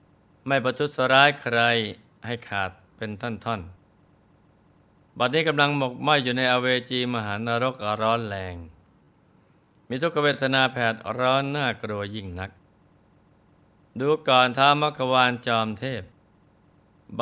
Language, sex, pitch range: Thai, male, 110-130 Hz